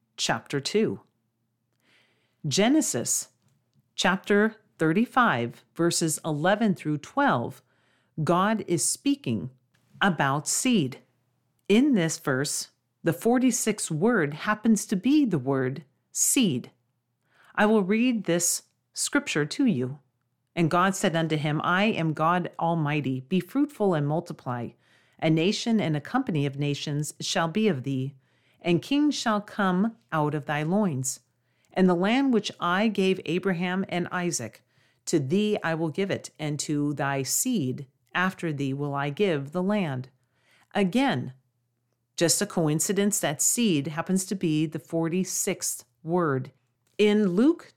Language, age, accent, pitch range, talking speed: English, 40-59, American, 135-205 Hz, 130 wpm